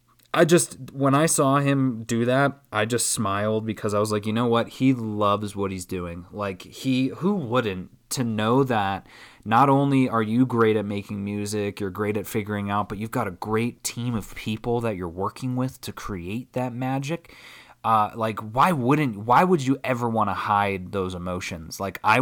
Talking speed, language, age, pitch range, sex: 200 wpm, English, 20-39, 100-125 Hz, male